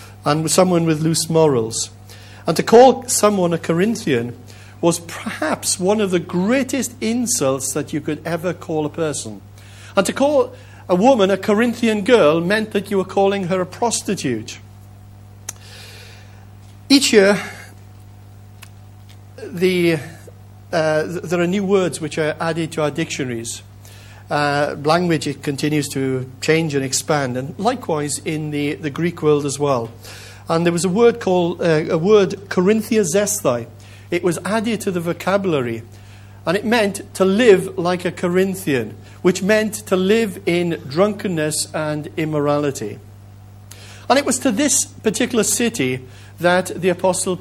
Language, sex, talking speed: English, male, 145 wpm